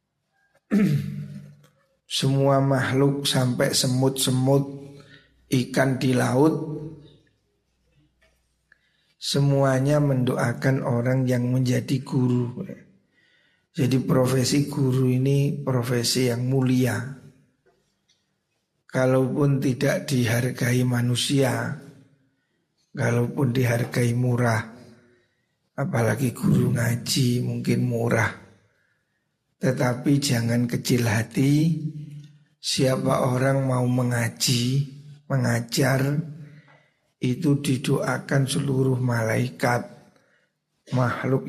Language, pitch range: Indonesian, 125-140 Hz